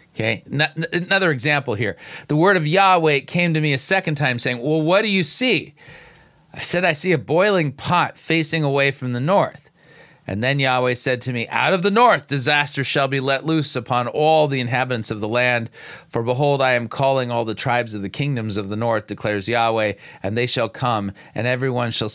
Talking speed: 210 wpm